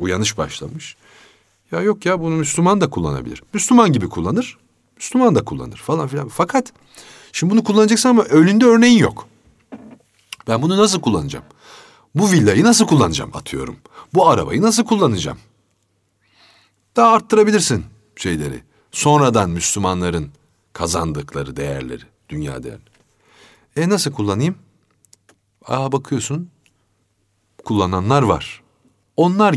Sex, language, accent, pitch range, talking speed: male, Turkish, native, 100-155 Hz, 110 wpm